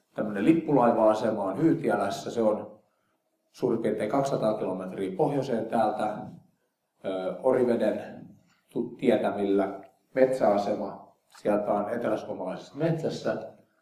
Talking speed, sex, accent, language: 85 wpm, male, native, Finnish